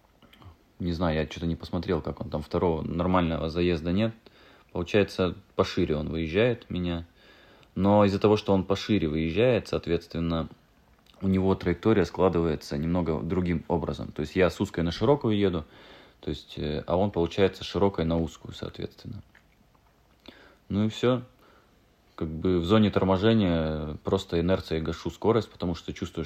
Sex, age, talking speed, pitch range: male, 30-49, 145 wpm, 80-100 Hz